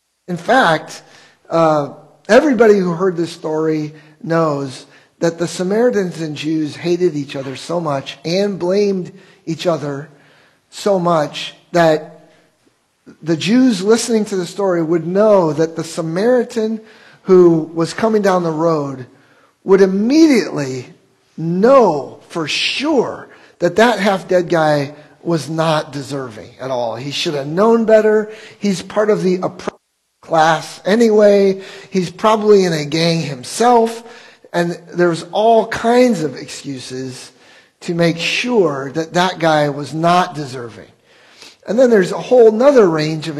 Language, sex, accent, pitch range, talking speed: English, male, American, 155-205 Hz, 135 wpm